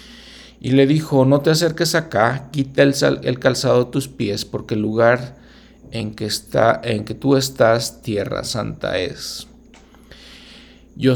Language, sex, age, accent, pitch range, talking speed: Spanish, male, 40-59, Mexican, 110-135 Hz, 140 wpm